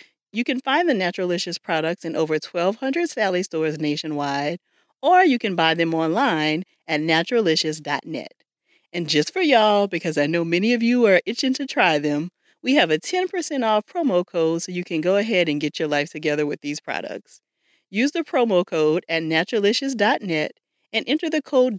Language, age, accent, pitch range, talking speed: English, 40-59, American, 160-245 Hz, 180 wpm